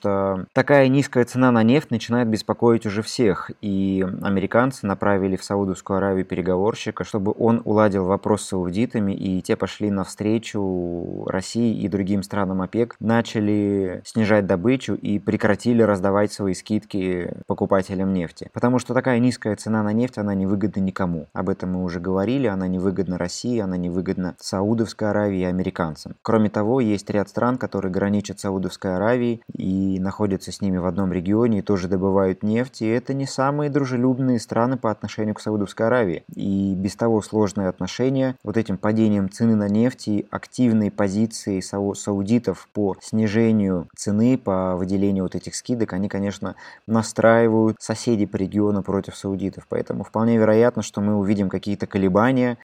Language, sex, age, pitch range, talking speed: Russian, male, 20-39, 95-115 Hz, 160 wpm